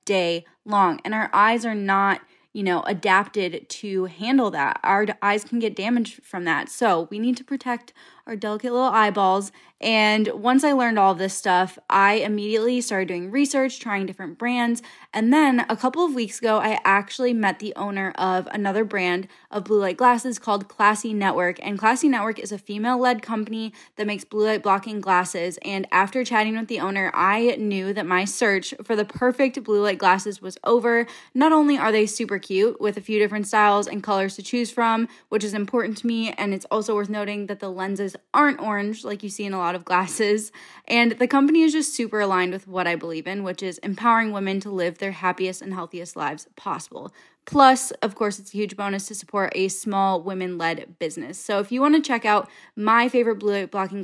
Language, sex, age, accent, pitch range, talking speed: English, female, 10-29, American, 195-235 Hz, 205 wpm